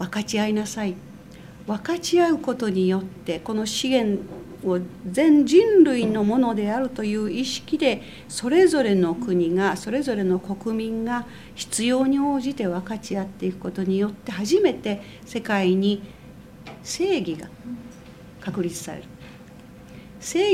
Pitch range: 185-245 Hz